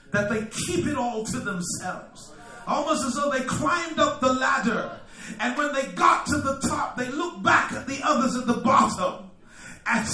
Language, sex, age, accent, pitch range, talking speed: English, male, 40-59, American, 220-270 Hz, 190 wpm